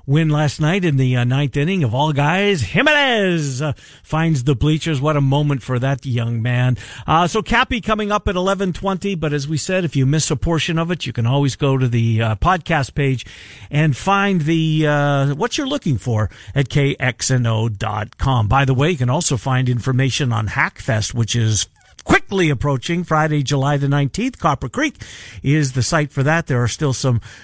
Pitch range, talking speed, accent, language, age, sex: 130-165 Hz, 190 wpm, American, English, 50-69, male